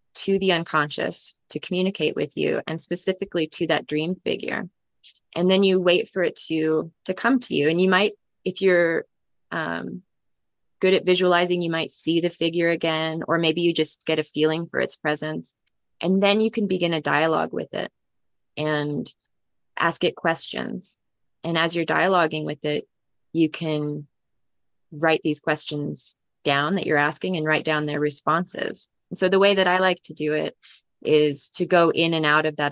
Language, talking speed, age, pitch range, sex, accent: English, 180 wpm, 20-39, 150-175 Hz, female, American